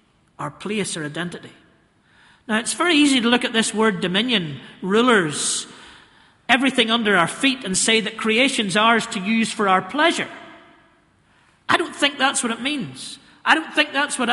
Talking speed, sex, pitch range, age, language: 170 wpm, male, 215-275 Hz, 40-59, English